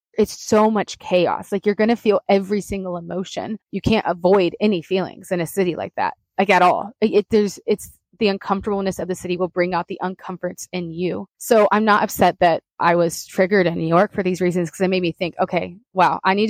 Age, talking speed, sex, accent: 20-39, 235 wpm, female, American